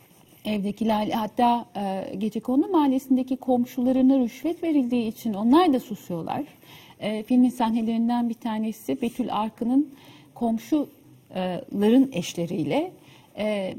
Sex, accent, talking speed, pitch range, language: female, native, 95 wpm, 180-255 Hz, Turkish